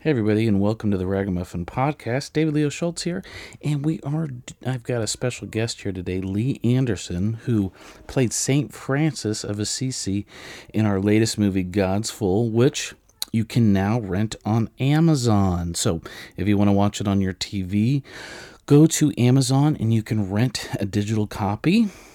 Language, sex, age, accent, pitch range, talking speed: English, male, 40-59, American, 100-125 Hz, 170 wpm